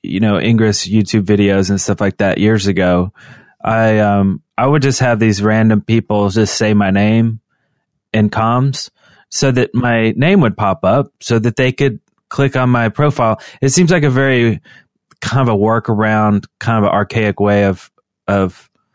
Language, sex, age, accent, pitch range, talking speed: English, male, 20-39, American, 105-130 Hz, 185 wpm